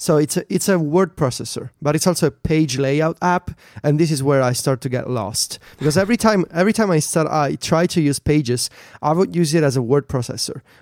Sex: male